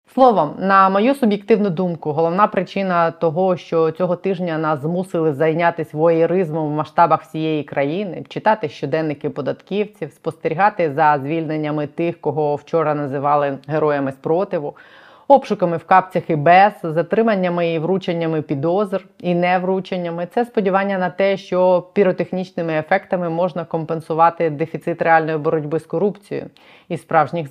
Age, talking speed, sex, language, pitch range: 20-39, 130 wpm, female, Ukrainian, 160-195 Hz